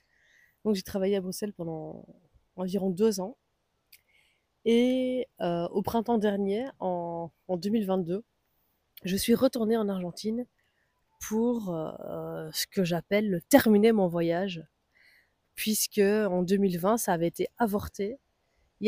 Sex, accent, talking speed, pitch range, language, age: female, French, 125 wpm, 180-230 Hz, French, 20-39